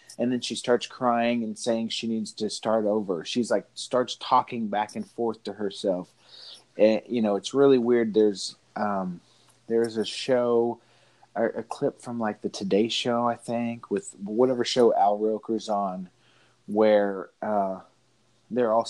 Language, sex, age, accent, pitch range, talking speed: English, male, 30-49, American, 105-125 Hz, 160 wpm